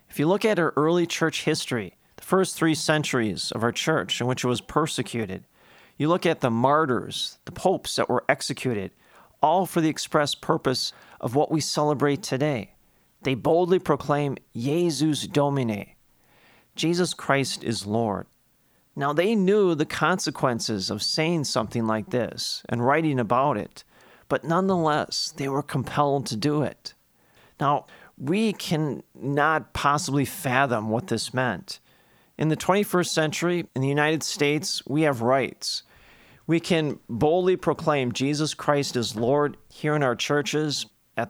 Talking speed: 155 wpm